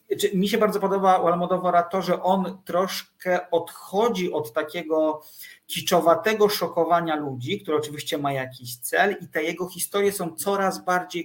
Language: Polish